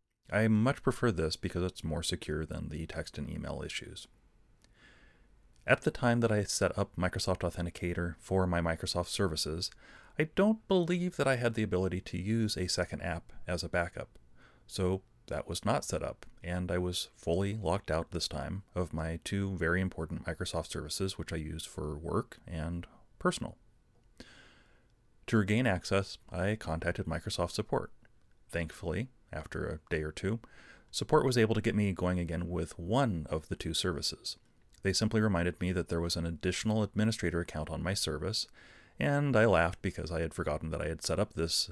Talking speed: 180 wpm